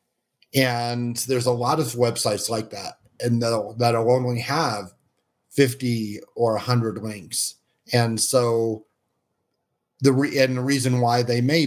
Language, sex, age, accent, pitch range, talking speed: English, male, 40-59, American, 110-125 Hz, 145 wpm